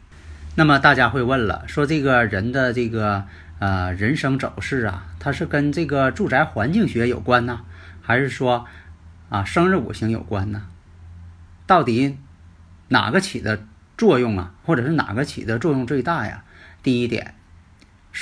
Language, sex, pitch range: Chinese, male, 95-145 Hz